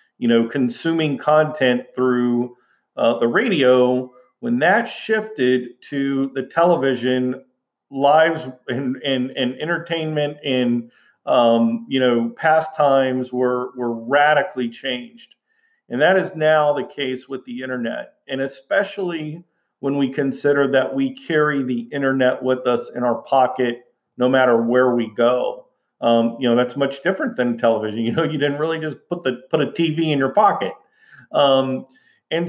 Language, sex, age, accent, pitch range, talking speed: English, male, 50-69, American, 120-150 Hz, 150 wpm